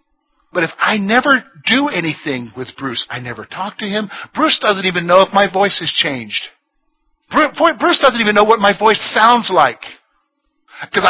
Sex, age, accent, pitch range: male, 50-69, American, 200-290 Hz